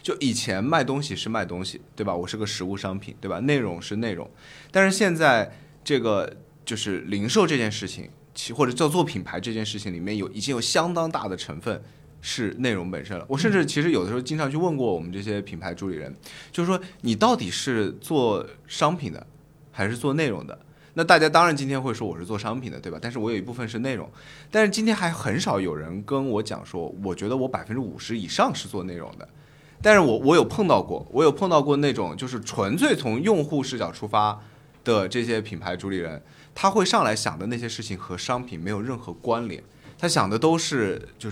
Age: 20-39